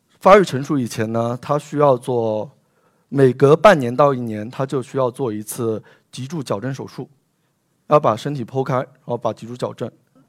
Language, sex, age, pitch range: Chinese, male, 20-39, 120-155 Hz